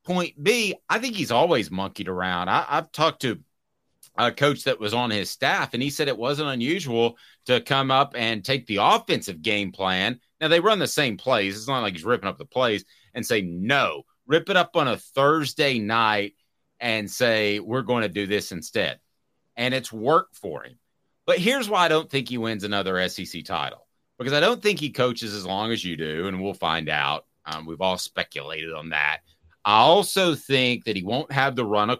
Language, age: English, 30-49